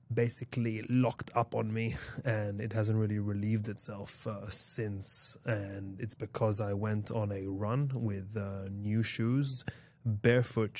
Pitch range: 105-120 Hz